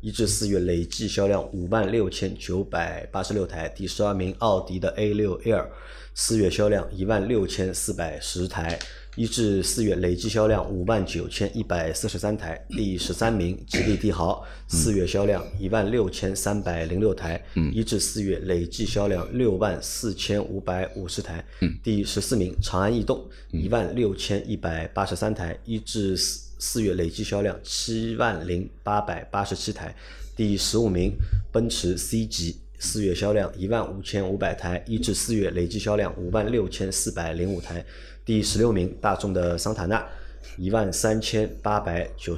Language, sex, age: Chinese, male, 20-39